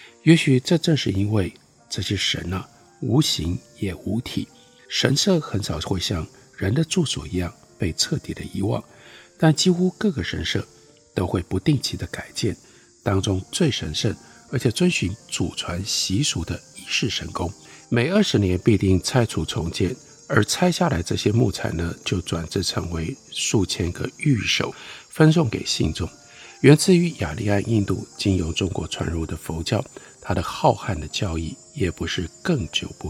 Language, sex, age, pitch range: Chinese, male, 50-69, 90-135 Hz